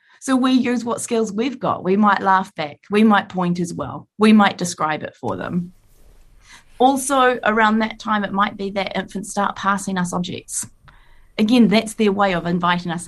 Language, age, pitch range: English, 30-49, 180-230 Hz